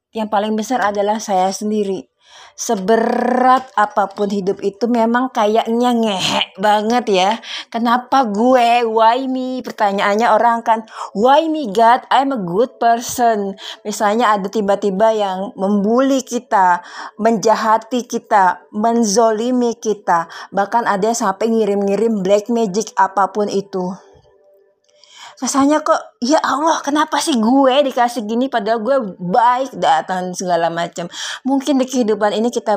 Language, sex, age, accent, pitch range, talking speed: Indonesian, female, 20-39, native, 200-240 Hz, 125 wpm